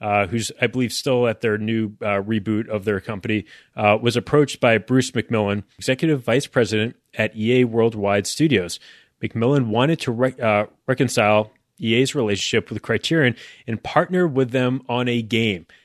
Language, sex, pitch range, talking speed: English, male, 110-135 Hz, 160 wpm